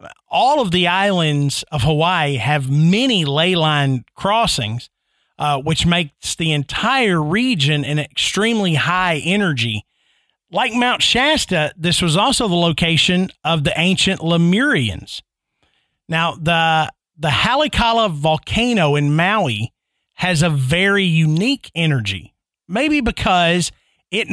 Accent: American